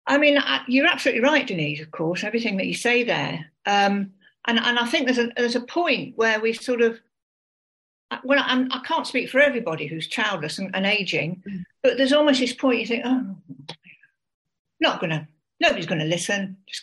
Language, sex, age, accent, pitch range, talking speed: English, female, 60-79, British, 190-255 Hz, 190 wpm